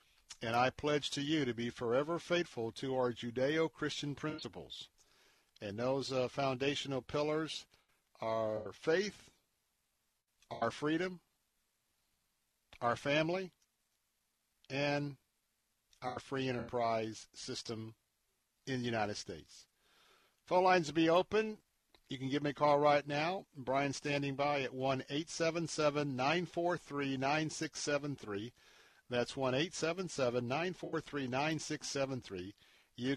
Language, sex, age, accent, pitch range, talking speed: English, male, 50-69, American, 125-155 Hz, 100 wpm